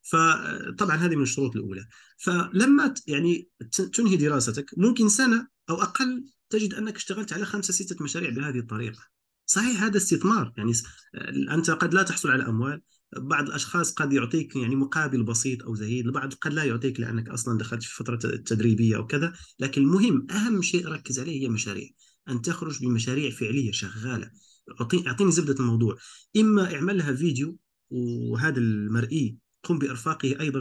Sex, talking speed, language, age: male, 150 wpm, Arabic, 40-59